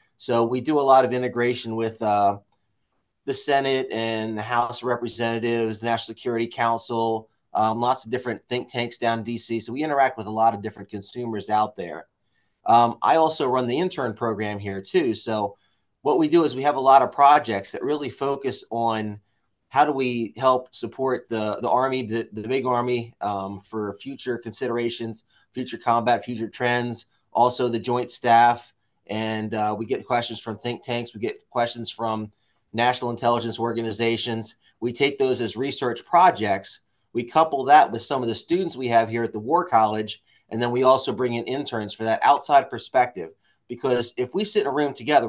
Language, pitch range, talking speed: English, 110-130 Hz, 190 wpm